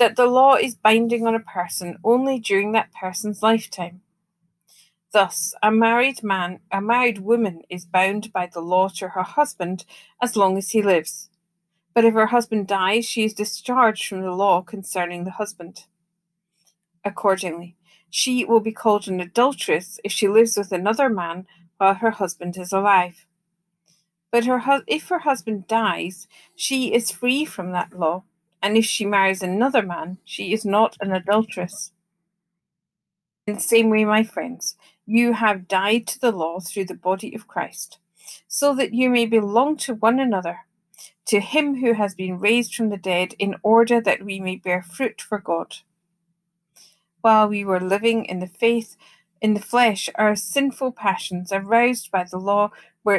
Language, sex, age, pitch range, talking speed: English, female, 40-59, 180-230 Hz, 165 wpm